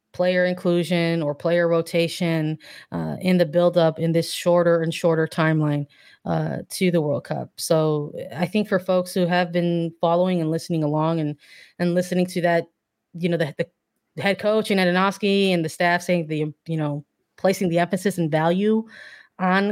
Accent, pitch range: American, 165-185 Hz